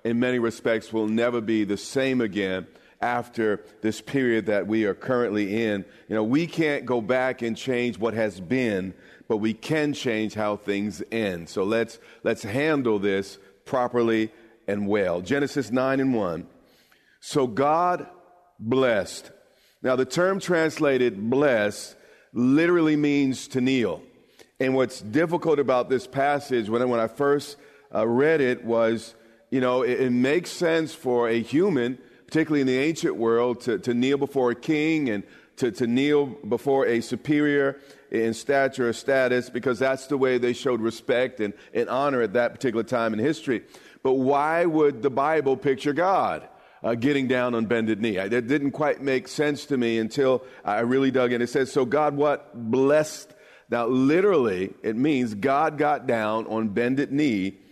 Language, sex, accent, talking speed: English, male, American, 170 wpm